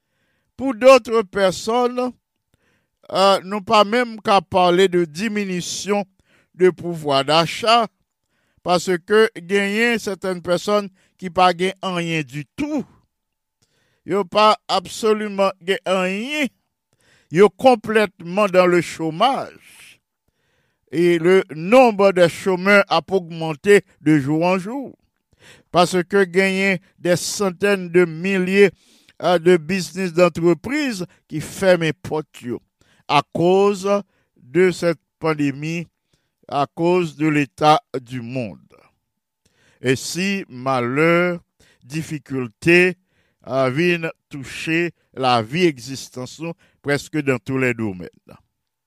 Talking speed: 105 wpm